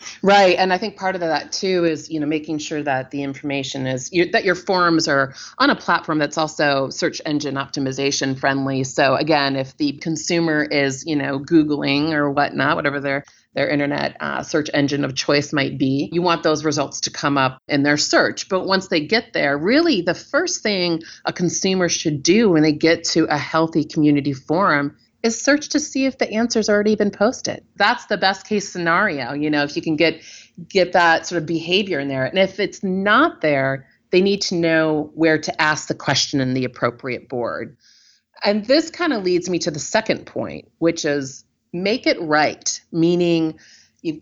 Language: English